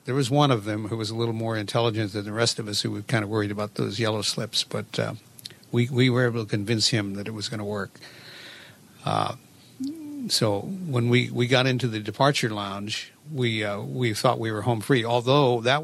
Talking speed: 225 wpm